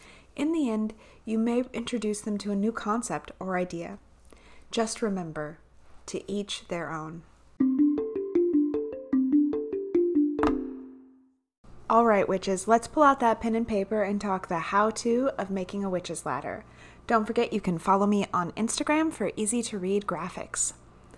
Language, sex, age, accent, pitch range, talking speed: English, female, 30-49, American, 180-250 Hz, 140 wpm